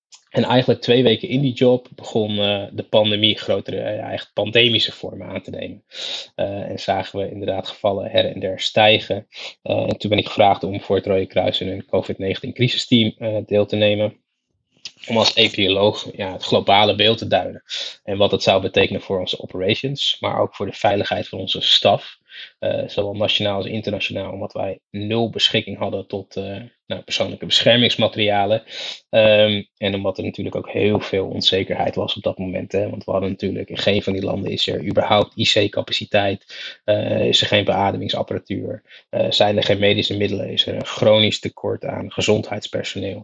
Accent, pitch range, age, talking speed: Dutch, 100-110 Hz, 20-39, 180 wpm